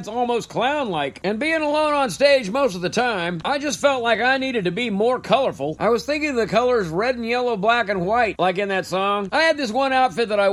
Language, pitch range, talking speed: English, 205-265 Hz, 255 wpm